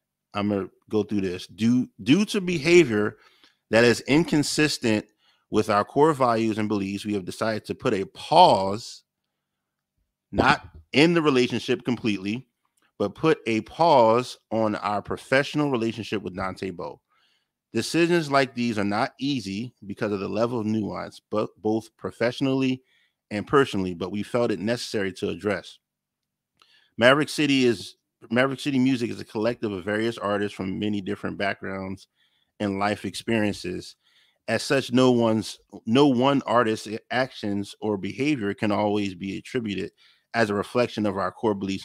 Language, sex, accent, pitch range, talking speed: English, male, American, 100-130 Hz, 150 wpm